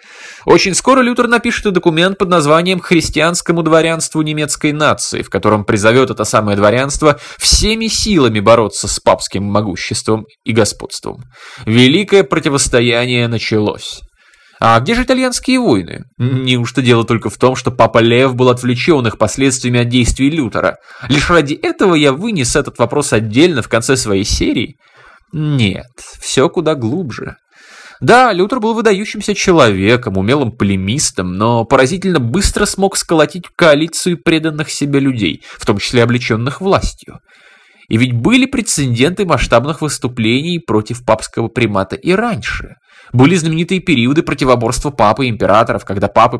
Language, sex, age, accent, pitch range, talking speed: Russian, male, 20-39, native, 115-165 Hz, 135 wpm